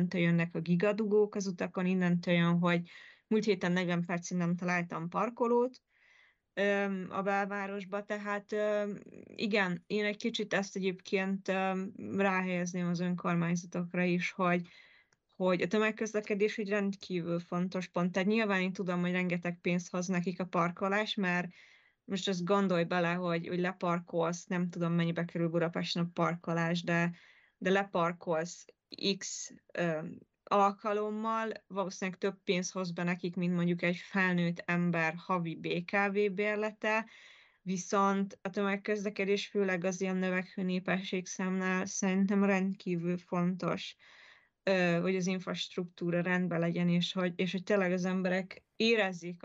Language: Hungarian